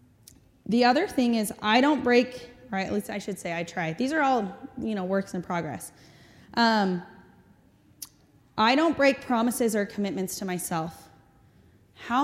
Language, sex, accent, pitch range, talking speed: English, female, American, 195-250 Hz, 160 wpm